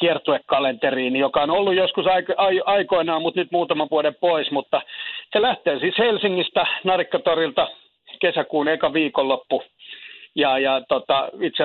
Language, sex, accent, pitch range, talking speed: Finnish, male, native, 140-190 Hz, 125 wpm